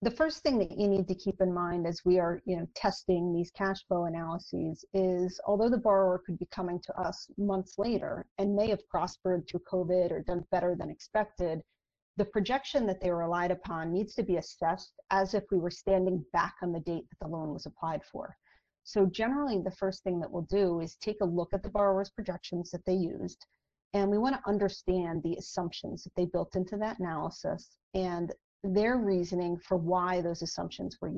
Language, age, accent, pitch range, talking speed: English, 40-59, American, 175-200 Hz, 200 wpm